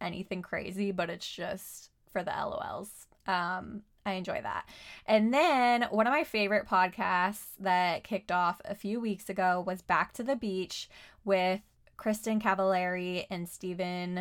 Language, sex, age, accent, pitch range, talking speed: English, female, 20-39, American, 180-215 Hz, 150 wpm